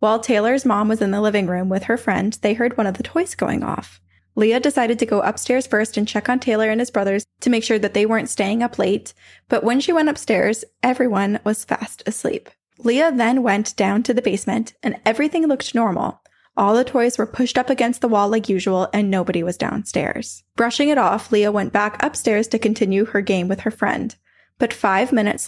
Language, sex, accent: English, female, American